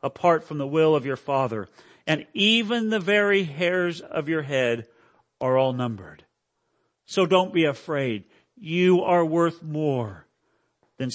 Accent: American